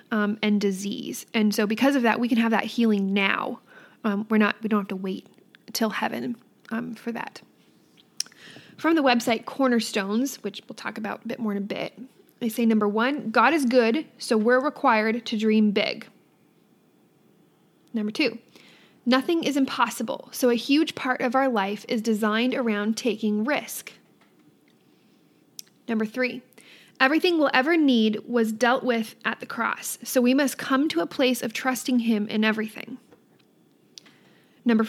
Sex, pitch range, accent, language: female, 220-255 Hz, American, English